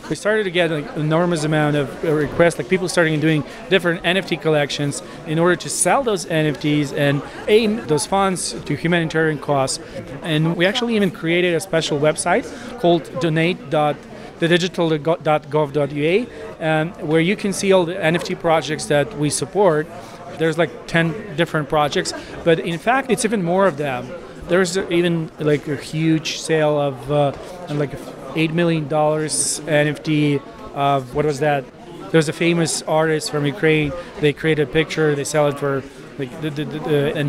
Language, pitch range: English, 150-175 Hz